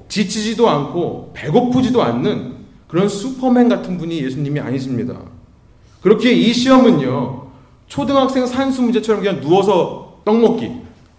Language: Korean